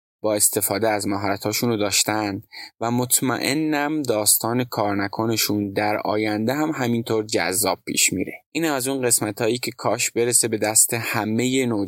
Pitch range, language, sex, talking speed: 105-130 Hz, Persian, male, 140 wpm